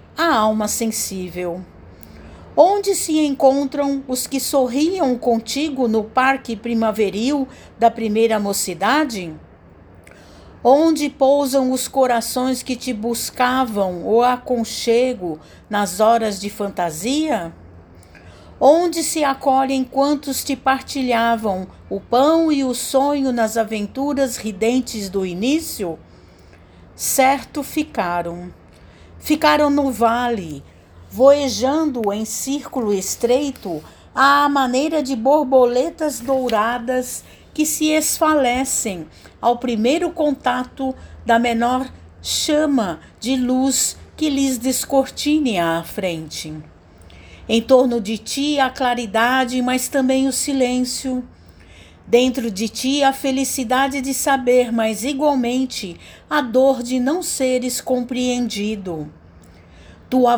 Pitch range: 210-270 Hz